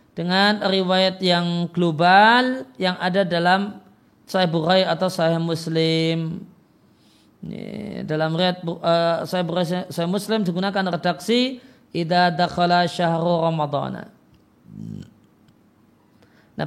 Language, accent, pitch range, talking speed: Indonesian, native, 175-210 Hz, 95 wpm